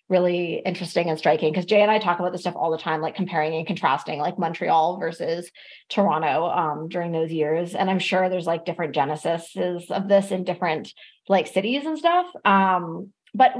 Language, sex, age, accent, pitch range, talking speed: English, female, 20-39, American, 180-230 Hz, 195 wpm